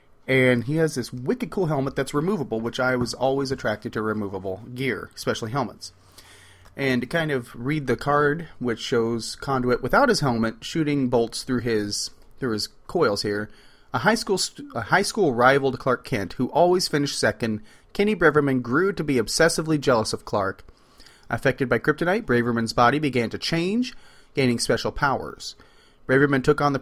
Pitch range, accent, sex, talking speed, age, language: 115-155 Hz, American, male, 170 wpm, 30-49, English